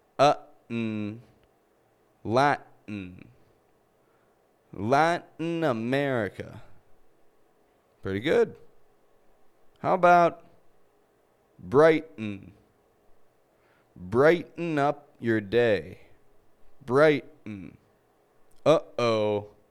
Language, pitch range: English, 115-195 Hz